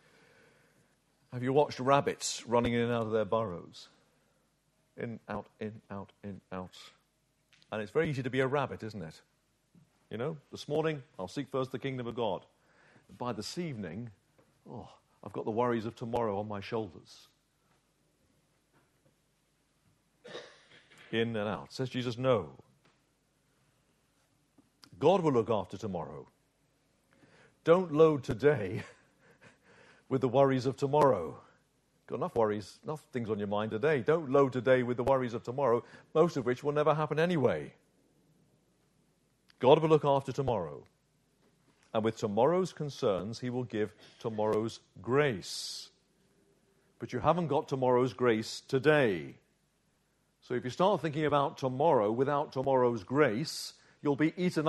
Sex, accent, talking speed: male, British, 140 wpm